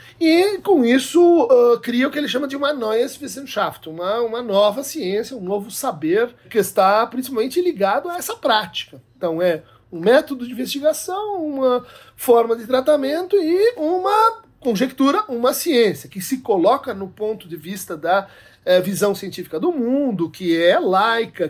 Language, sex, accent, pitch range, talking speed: Portuguese, male, Brazilian, 185-245 Hz, 160 wpm